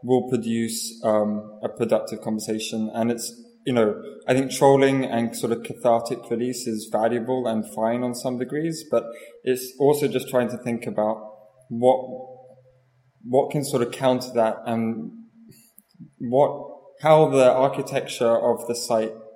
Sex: male